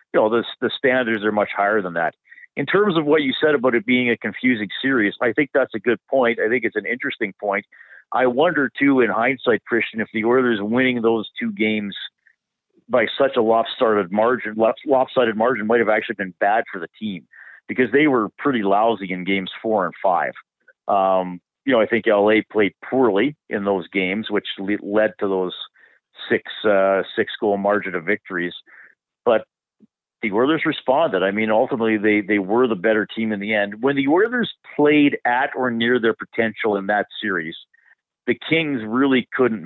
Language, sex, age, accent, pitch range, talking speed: English, male, 50-69, American, 105-130 Hz, 190 wpm